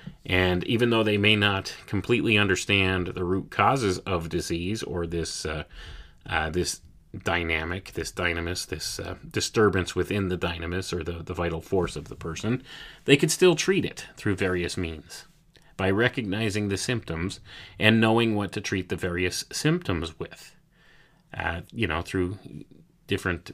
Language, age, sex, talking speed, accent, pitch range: English, 30-49, male, 155 wpm, American, 90-135 Hz